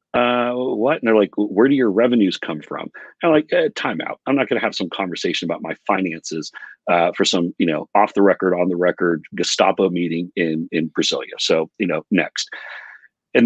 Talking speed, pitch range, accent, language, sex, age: 215 wpm, 85-115 Hz, American, English, male, 40-59